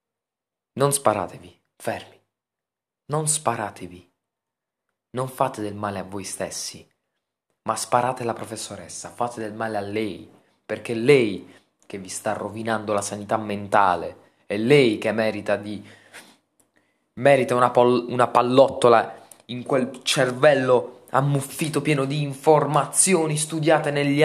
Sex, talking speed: male, 125 wpm